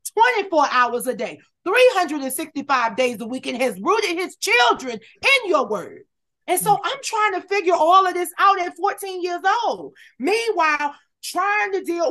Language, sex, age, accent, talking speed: English, female, 30-49, American, 170 wpm